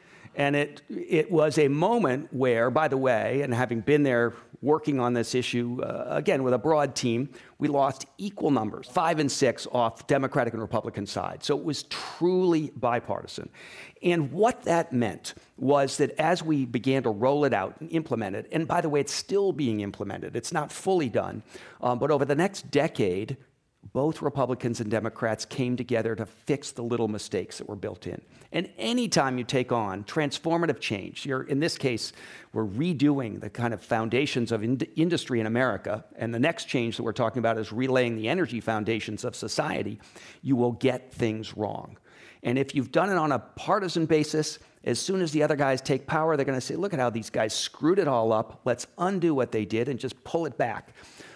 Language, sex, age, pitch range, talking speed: English, male, 50-69, 115-150 Hz, 200 wpm